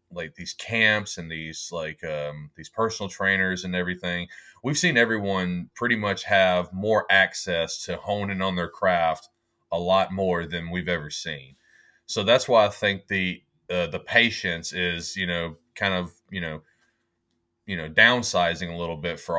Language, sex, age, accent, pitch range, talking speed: English, male, 30-49, American, 85-95 Hz, 170 wpm